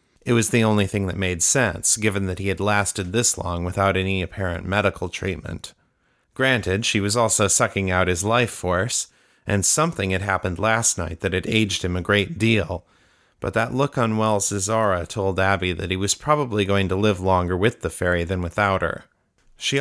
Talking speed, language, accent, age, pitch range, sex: 195 wpm, English, American, 30-49, 95-110 Hz, male